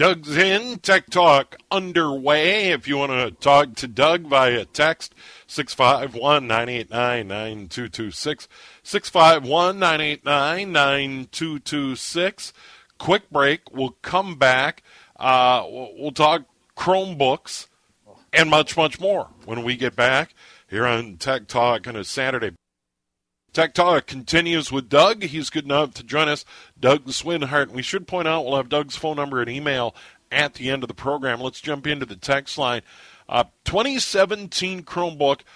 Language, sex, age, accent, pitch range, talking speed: English, male, 50-69, American, 130-165 Hz, 135 wpm